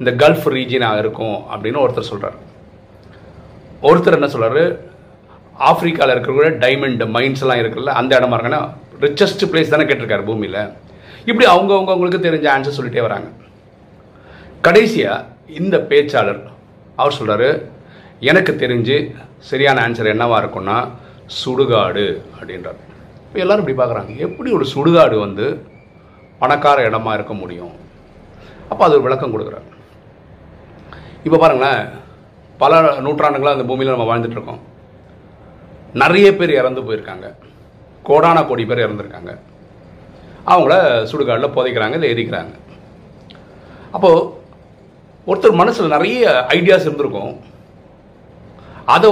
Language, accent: Tamil, native